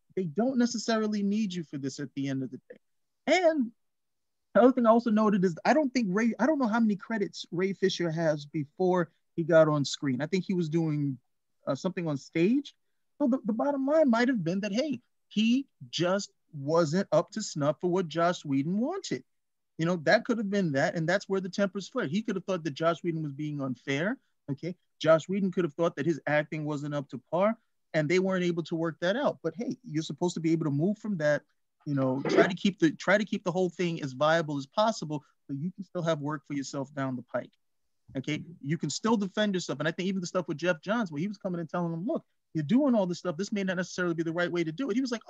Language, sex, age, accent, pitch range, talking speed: English, male, 30-49, American, 160-235 Hz, 255 wpm